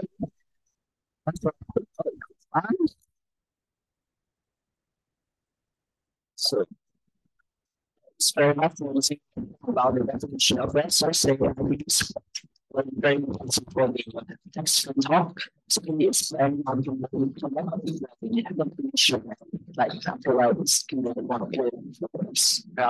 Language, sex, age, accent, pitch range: English, male, 50-69, American, 135-215 Hz